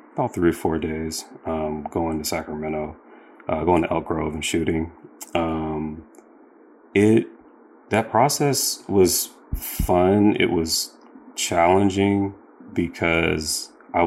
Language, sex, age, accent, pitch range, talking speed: English, male, 30-49, American, 80-85 Hz, 115 wpm